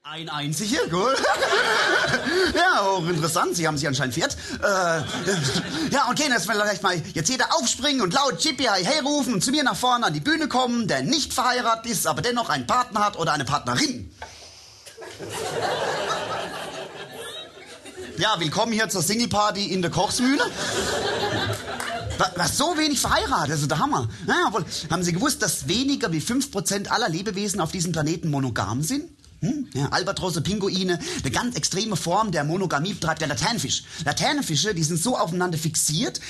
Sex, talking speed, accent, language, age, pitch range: male, 160 wpm, German, German, 30-49, 160-230 Hz